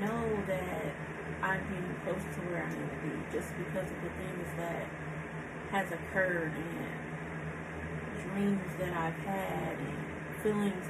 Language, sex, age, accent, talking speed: English, female, 30-49, American, 145 wpm